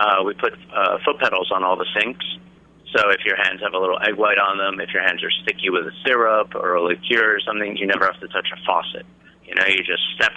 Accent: American